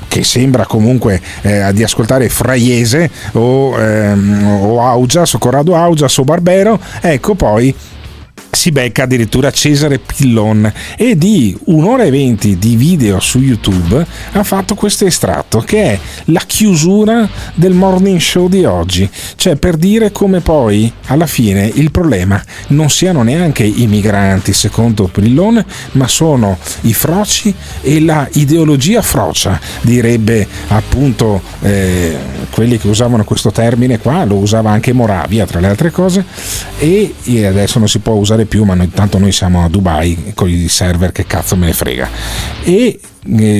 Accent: native